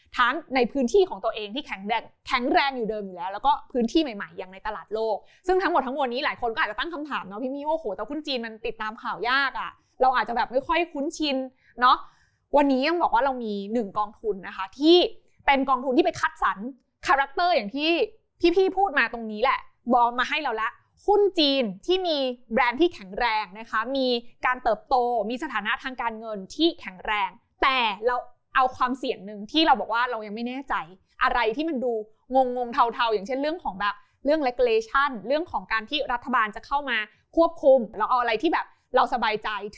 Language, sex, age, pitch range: Thai, female, 20-39, 225-295 Hz